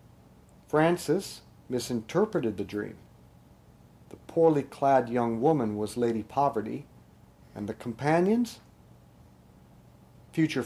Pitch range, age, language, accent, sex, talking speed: 110-155 Hz, 50-69, English, American, male, 90 wpm